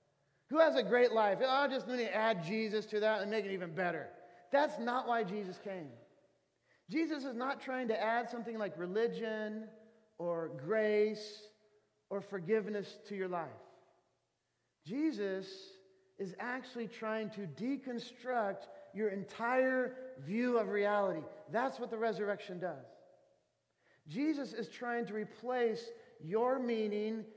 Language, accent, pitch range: English, American, 200-250 Hz